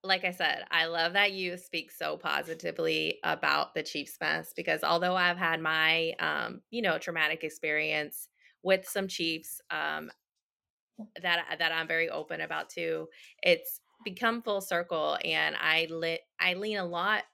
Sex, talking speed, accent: female, 160 wpm, American